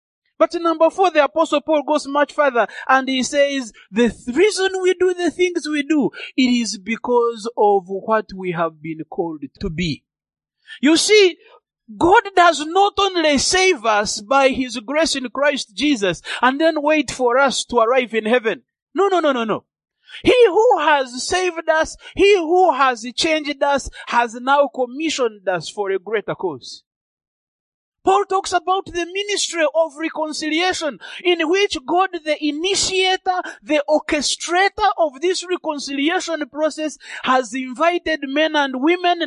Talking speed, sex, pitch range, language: 155 wpm, male, 260-350 Hz, English